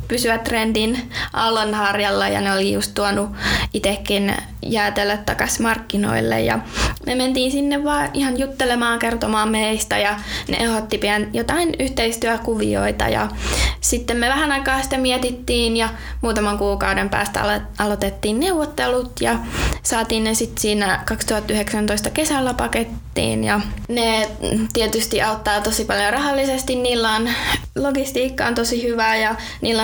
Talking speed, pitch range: 125 wpm, 200-240 Hz